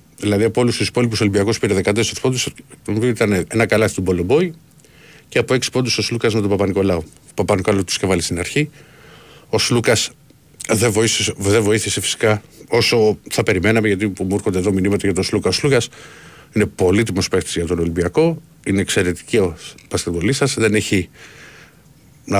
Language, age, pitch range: Greek, 50-69, 100-140 Hz